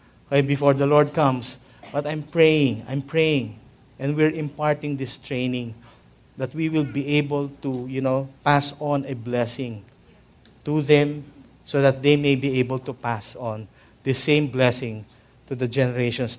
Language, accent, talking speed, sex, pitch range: English, Filipino, 155 wpm, male, 125-160 Hz